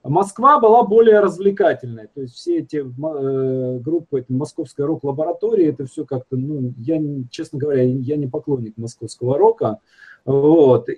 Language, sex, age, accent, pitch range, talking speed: Russian, male, 40-59, native, 140-220 Hz, 140 wpm